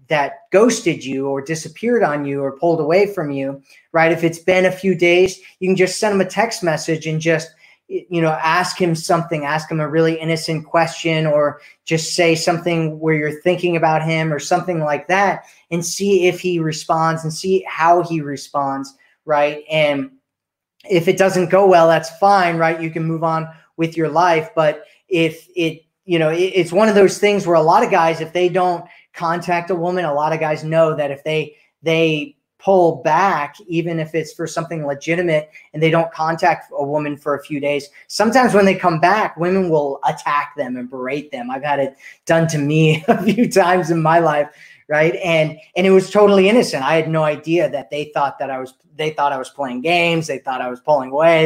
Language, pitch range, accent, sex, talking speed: English, 150-175 Hz, American, male, 210 wpm